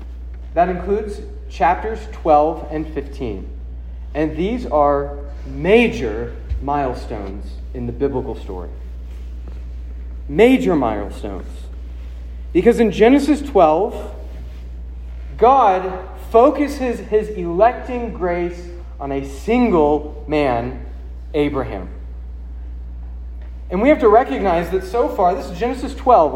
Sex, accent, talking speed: male, American, 100 wpm